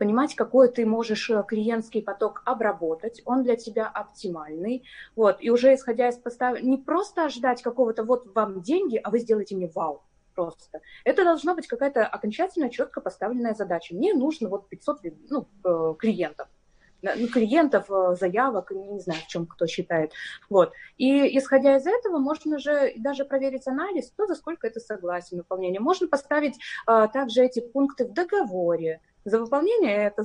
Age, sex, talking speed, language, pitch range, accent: 20-39, female, 155 wpm, Russian, 205-275 Hz, native